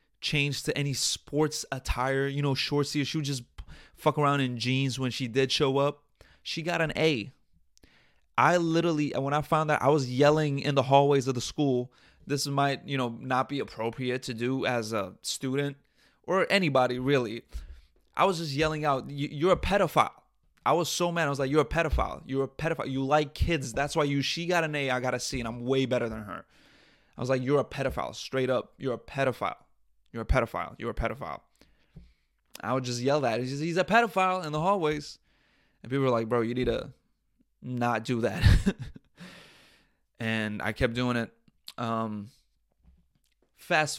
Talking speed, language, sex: 195 wpm, English, male